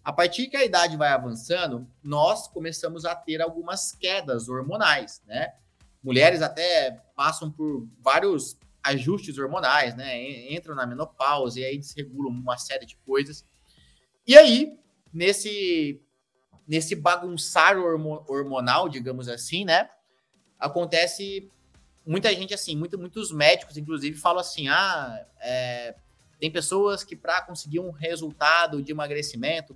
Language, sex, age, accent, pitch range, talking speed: Portuguese, male, 20-39, Brazilian, 140-185 Hz, 125 wpm